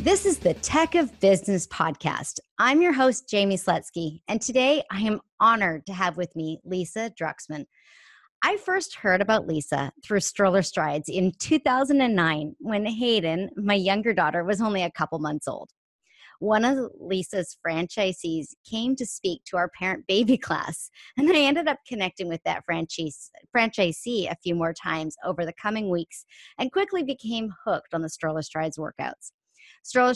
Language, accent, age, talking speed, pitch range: English, American, 30-49, 165 wpm, 170-230 Hz